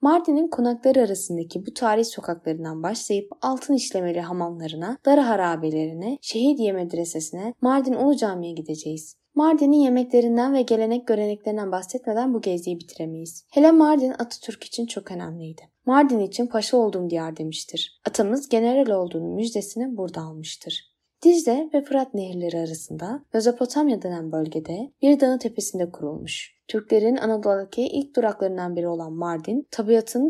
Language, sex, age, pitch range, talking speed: Turkish, female, 20-39, 175-250 Hz, 130 wpm